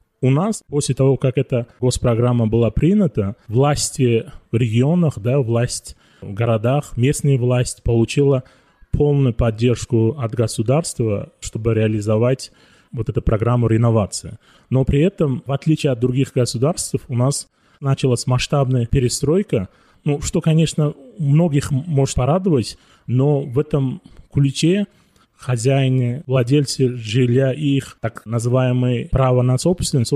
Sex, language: male, Russian